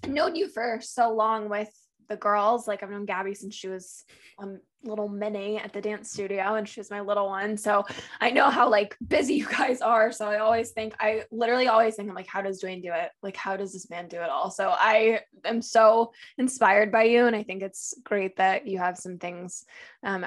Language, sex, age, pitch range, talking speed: English, female, 10-29, 190-230 Hz, 230 wpm